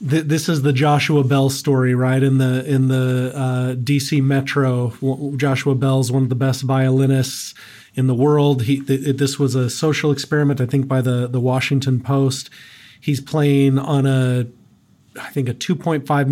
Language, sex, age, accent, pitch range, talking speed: English, male, 30-49, American, 130-140 Hz, 165 wpm